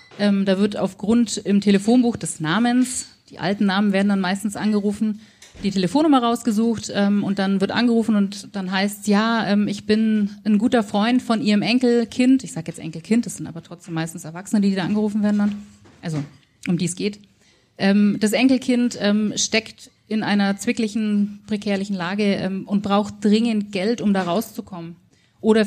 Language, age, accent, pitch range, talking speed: German, 30-49, German, 195-225 Hz, 175 wpm